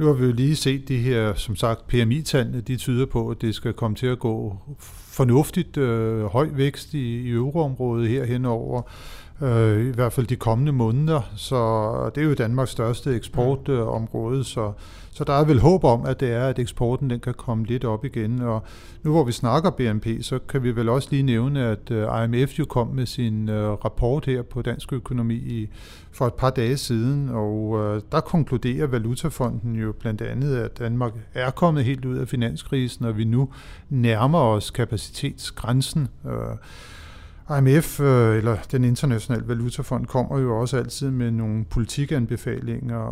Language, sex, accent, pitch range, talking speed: Danish, male, native, 115-135 Hz, 170 wpm